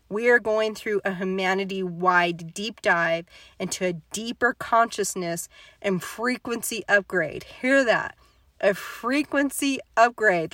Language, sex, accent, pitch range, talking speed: English, female, American, 190-235 Hz, 115 wpm